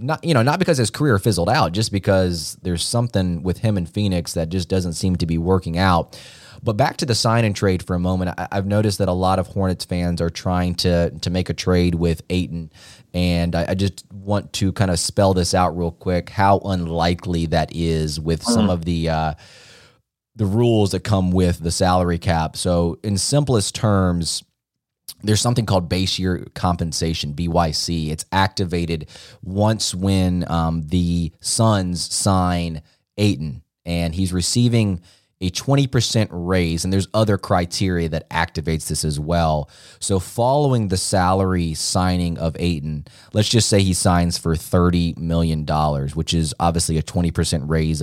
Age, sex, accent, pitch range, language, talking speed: 20-39, male, American, 85-100 Hz, English, 175 wpm